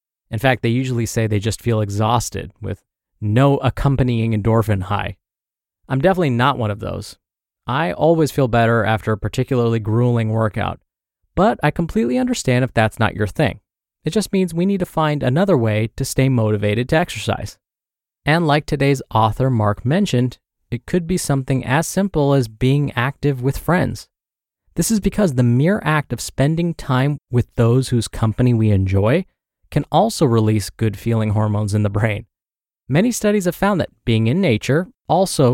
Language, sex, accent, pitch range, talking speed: English, male, American, 110-155 Hz, 170 wpm